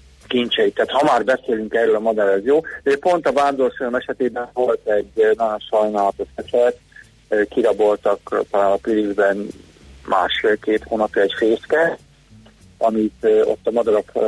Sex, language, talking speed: male, Hungarian, 135 wpm